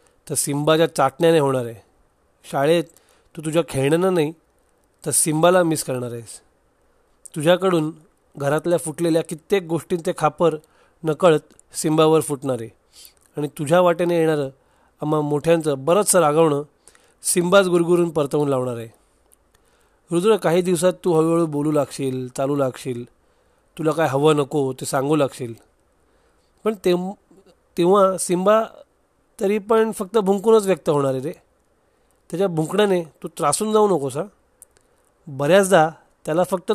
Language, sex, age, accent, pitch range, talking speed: Marathi, male, 40-59, native, 145-190 Hz, 120 wpm